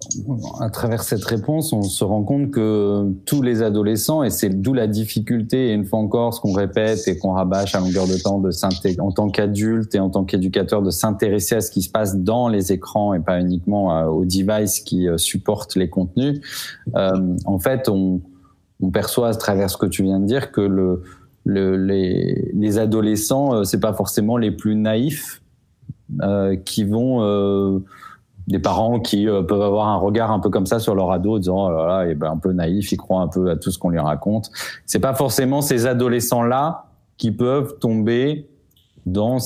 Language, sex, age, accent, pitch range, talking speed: French, male, 20-39, French, 95-115 Hz, 200 wpm